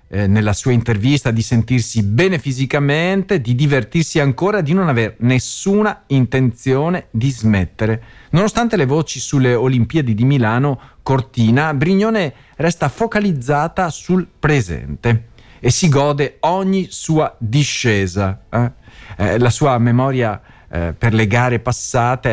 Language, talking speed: Italian, 125 wpm